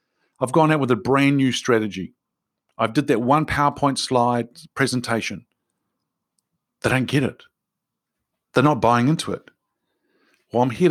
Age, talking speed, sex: 50-69, 150 wpm, male